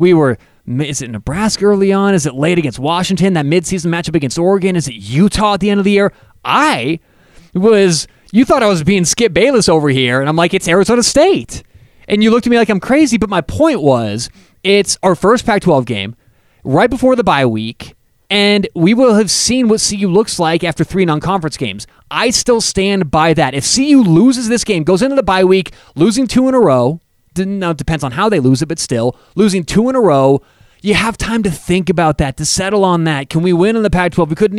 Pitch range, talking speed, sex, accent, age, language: 160-210 Hz, 230 wpm, male, American, 30-49, English